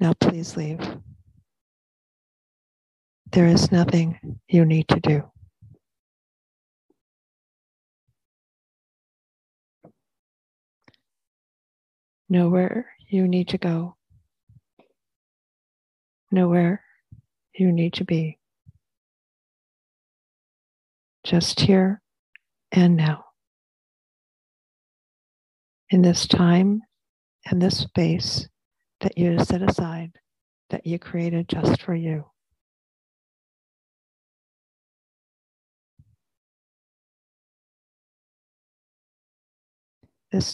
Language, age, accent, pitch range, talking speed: English, 40-59, American, 145-190 Hz, 60 wpm